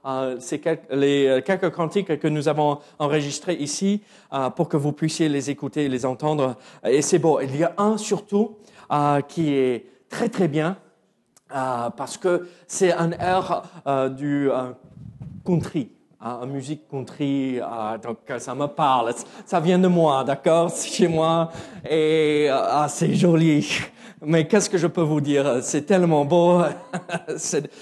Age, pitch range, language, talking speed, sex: 40-59, 145-190 Hz, French, 170 wpm, male